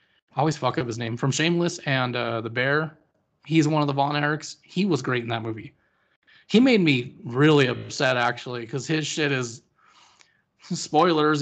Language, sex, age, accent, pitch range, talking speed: English, male, 20-39, American, 125-160 Hz, 185 wpm